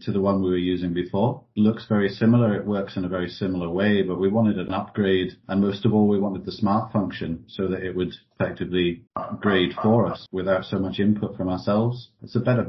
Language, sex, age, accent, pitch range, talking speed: English, male, 40-59, British, 95-105 Hz, 230 wpm